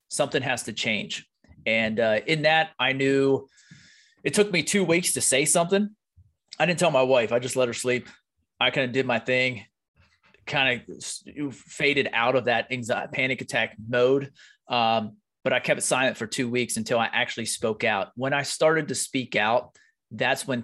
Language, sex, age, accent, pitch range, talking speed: English, male, 30-49, American, 115-140 Hz, 190 wpm